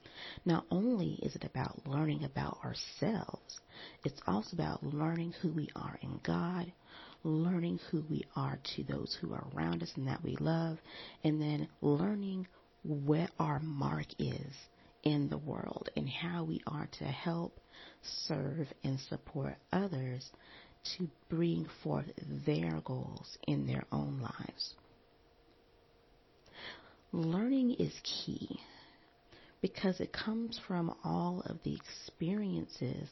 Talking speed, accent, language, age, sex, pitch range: 130 wpm, American, English, 40-59, female, 140-180 Hz